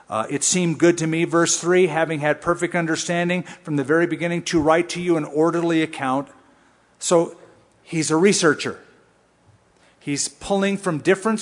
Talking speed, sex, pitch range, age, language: 165 wpm, male, 150-195 Hz, 50-69, English